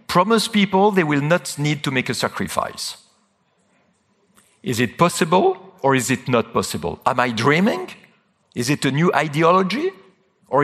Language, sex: English, male